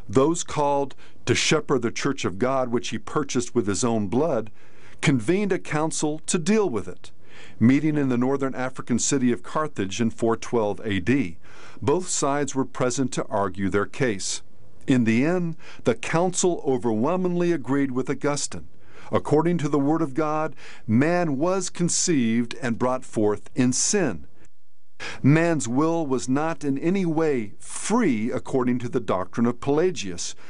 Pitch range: 115-155 Hz